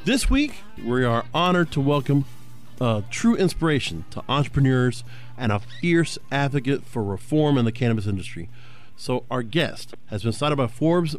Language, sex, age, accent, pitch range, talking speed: English, male, 40-59, American, 120-155 Hz, 160 wpm